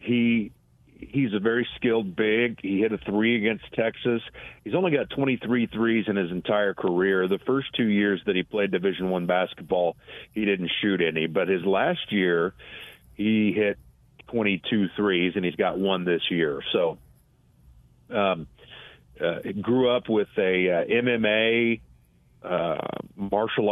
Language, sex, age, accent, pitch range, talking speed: English, male, 40-59, American, 95-115 Hz, 155 wpm